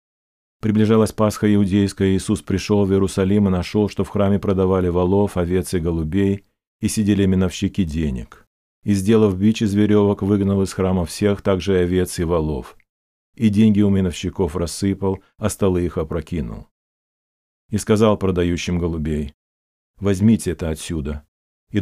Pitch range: 80-105 Hz